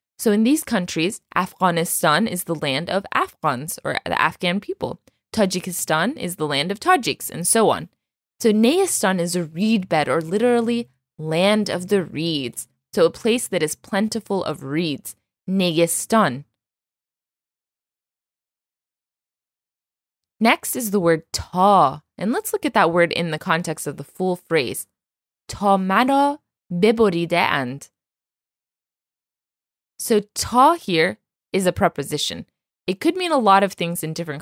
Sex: female